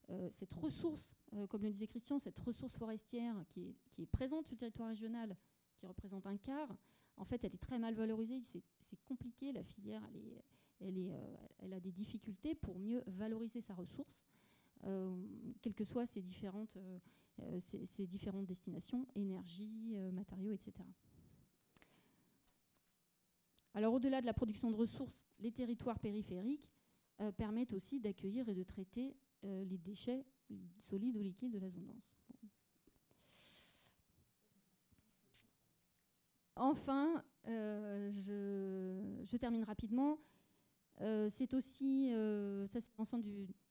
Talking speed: 135 wpm